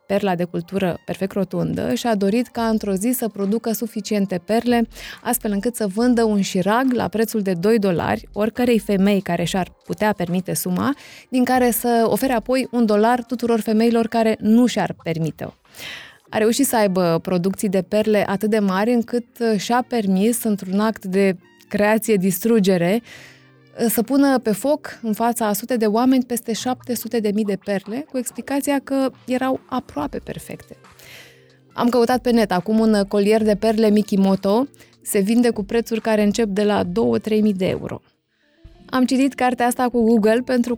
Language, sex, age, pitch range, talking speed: Romanian, female, 20-39, 200-235 Hz, 165 wpm